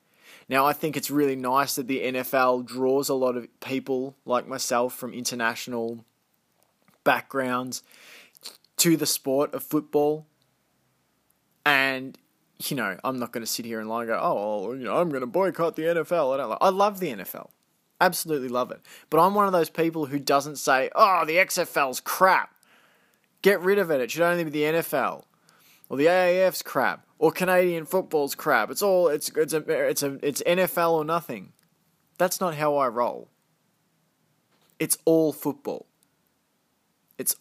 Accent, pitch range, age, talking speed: Australian, 125-165 Hz, 20-39, 175 wpm